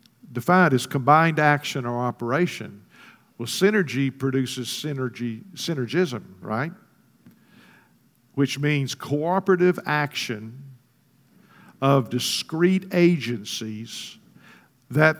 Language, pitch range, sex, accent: English, 125-165 Hz, male, American